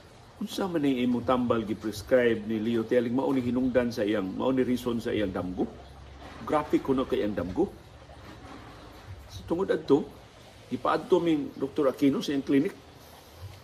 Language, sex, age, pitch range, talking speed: Filipino, male, 50-69, 115-180 Hz, 140 wpm